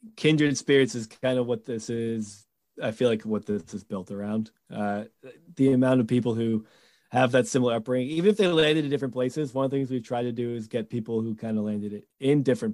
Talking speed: 240 wpm